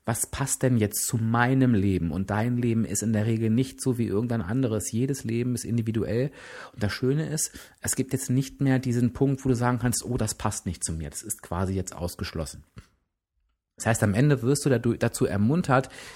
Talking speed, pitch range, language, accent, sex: 210 wpm, 100-125 Hz, German, German, male